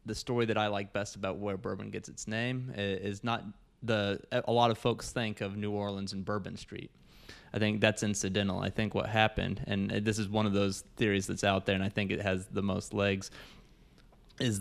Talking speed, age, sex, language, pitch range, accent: 220 wpm, 20-39, male, English, 95-110 Hz, American